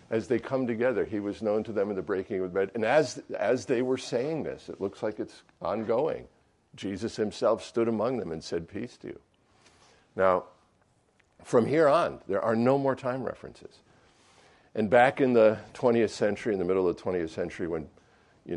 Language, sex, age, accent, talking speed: English, male, 50-69, American, 200 wpm